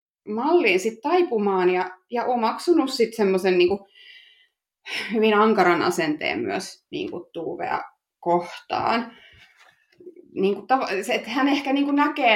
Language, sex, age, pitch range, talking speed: Finnish, female, 30-49, 175-240 Hz, 90 wpm